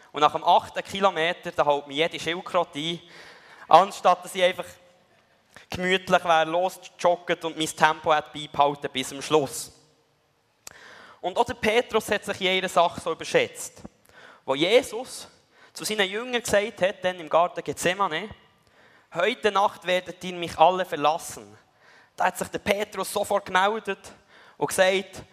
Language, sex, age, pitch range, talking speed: German, male, 20-39, 155-200 Hz, 145 wpm